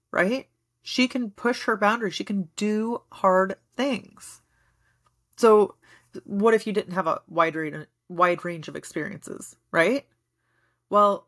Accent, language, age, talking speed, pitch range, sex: American, English, 30-49, 135 wpm, 155-240 Hz, female